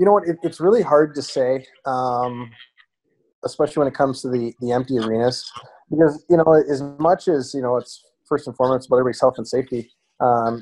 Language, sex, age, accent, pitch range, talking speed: English, male, 20-39, American, 115-130 Hz, 210 wpm